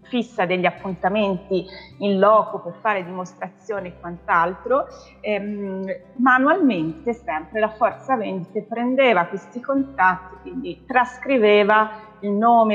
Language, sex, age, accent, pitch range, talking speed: Italian, female, 30-49, native, 185-230 Hz, 110 wpm